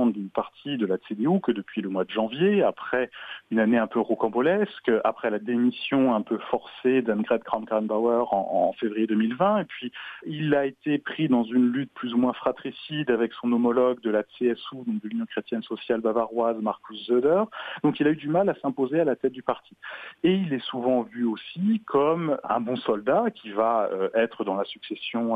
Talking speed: 200 wpm